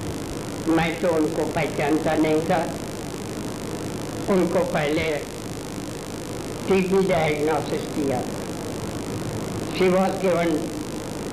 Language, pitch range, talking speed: Hindi, 155-190 Hz, 75 wpm